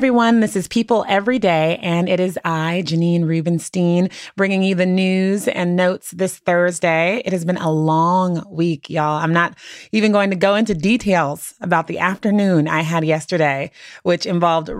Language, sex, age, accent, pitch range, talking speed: English, female, 30-49, American, 160-190 Hz, 180 wpm